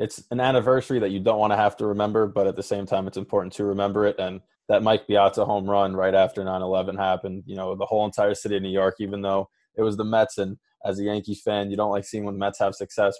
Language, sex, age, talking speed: English, male, 20-39, 275 wpm